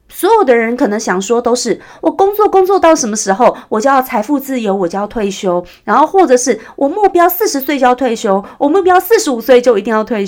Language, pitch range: Chinese, 200-300 Hz